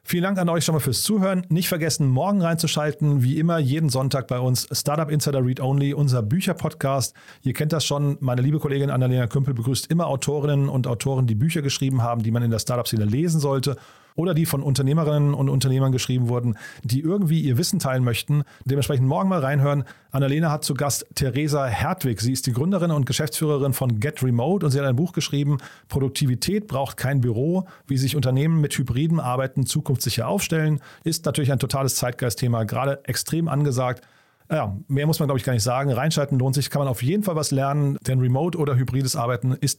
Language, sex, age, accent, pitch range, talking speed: German, male, 40-59, German, 130-155 Hz, 200 wpm